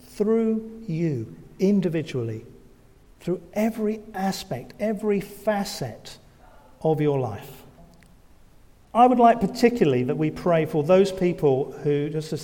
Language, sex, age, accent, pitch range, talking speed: English, male, 40-59, British, 125-170 Hz, 115 wpm